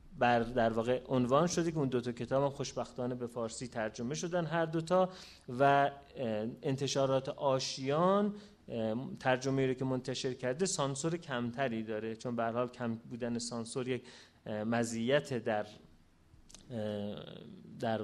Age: 30-49